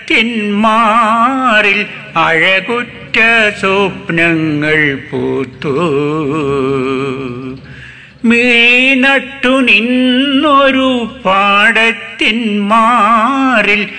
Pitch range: 135-210 Hz